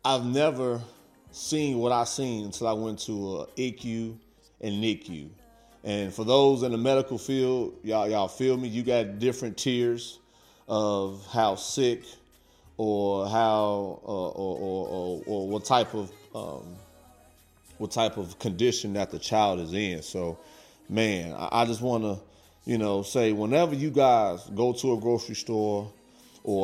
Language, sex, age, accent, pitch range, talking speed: English, male, 30-49, American, 100-130 Hz, 160 wpm